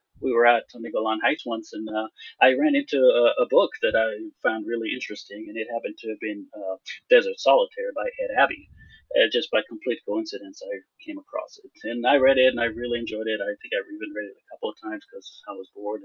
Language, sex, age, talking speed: English, male, 30-49, 235 wpm